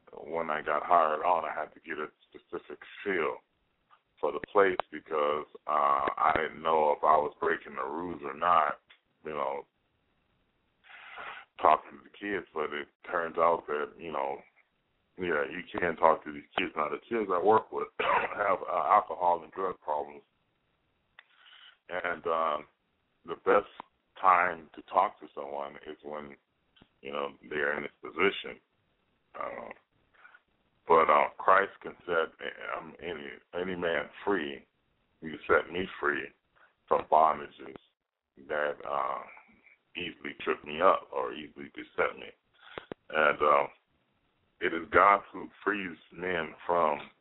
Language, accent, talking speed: English, American, 145 wpm